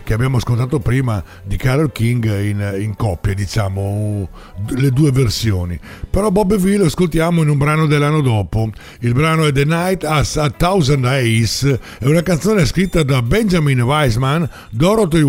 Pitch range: 120-165 Hz